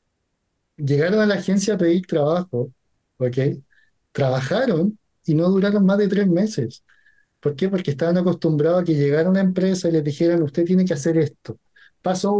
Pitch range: 150-185 Hz